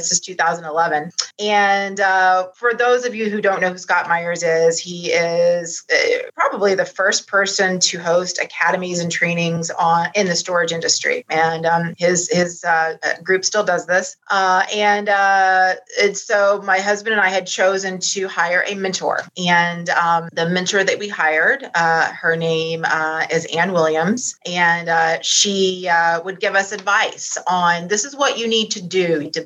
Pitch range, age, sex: 165-200 Hz, 30-49, female